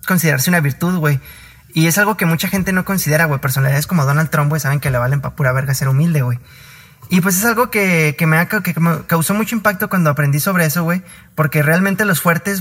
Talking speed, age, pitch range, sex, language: 230 wpm, 20-39, 145-185 Hz, male, Spanish